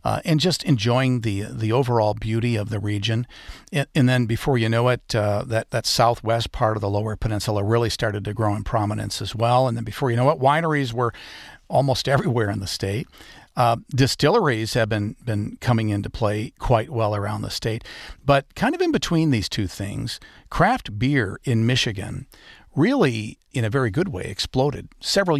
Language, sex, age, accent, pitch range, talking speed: English, male, 50-69, American, 110-140 Hz, 190 wpm